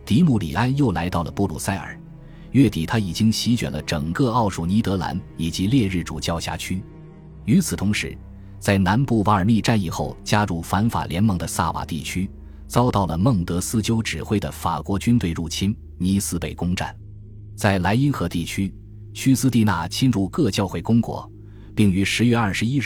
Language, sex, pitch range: Chinese, male, 85-115 Hz